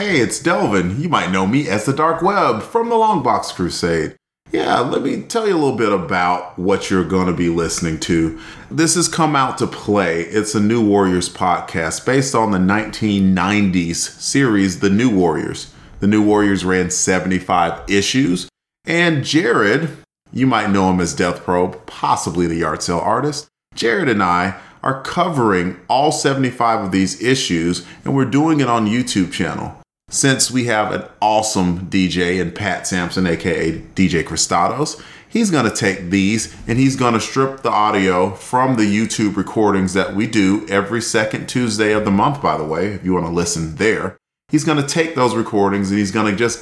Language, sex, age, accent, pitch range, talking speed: English, male, 40-59, American, 90-125 Hz, 180 wpm